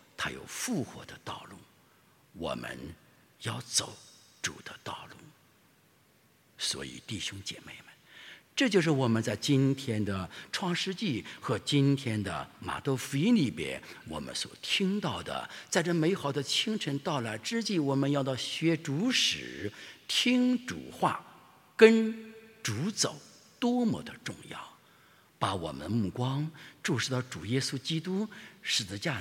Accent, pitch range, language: Chinese, 130-200 Hz, English